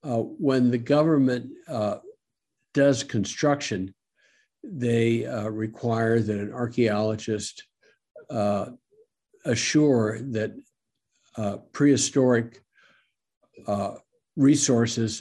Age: 60-79